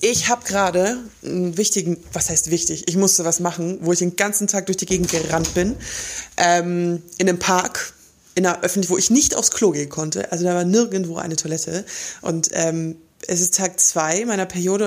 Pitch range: 170-215 Hz